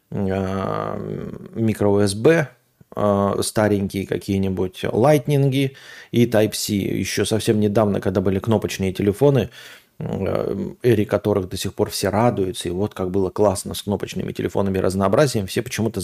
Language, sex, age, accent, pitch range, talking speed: Russian, male, 30-49, native, 100-115 Hz, 115 wpm